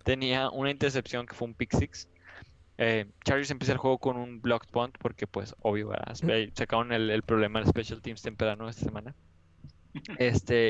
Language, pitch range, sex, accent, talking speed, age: Spanish, 110-130 Hz, male, Mexican, 195 wpm, 20-39